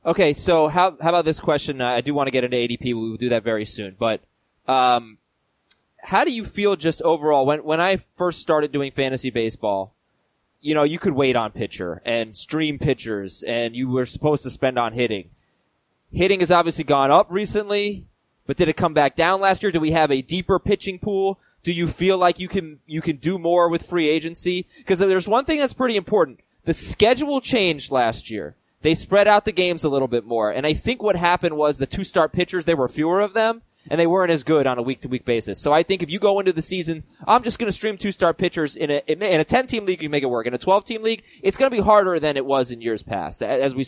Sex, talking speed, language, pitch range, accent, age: male, 240 wpm, English, 135-190 Hz, American, 20-39